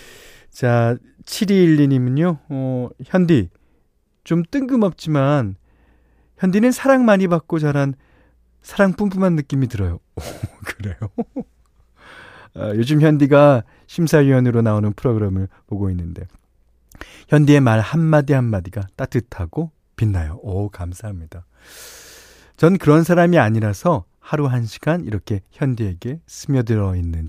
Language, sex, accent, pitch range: Korean, male, native, 100-155 Hz